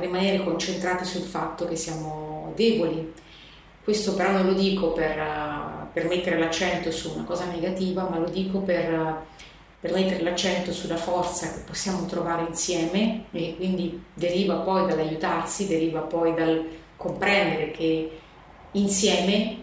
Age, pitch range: 30-49, 170-195 Hz